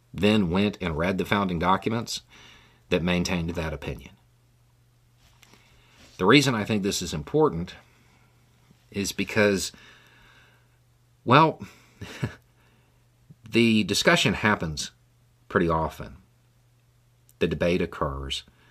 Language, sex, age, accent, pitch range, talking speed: English, male, 50-69, American, 85-120 Hz, 95 wpm